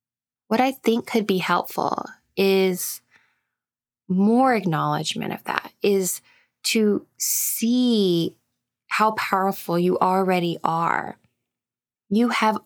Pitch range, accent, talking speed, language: 180-230 Hz, American, 100 wpm, English